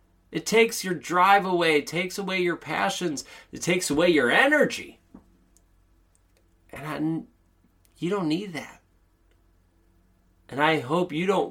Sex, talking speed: male, 130 wpm